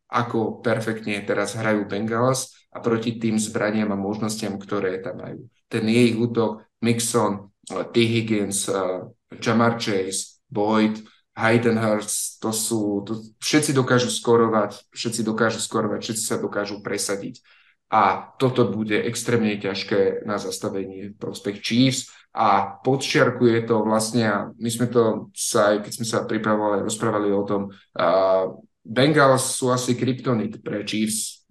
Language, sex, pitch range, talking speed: Slovak, male, 105-120 Hz, 135 wpm